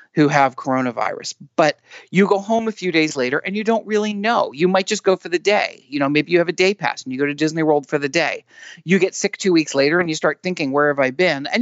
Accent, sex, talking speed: American, male, 285 wpm